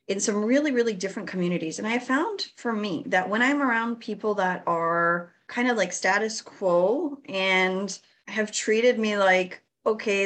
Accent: American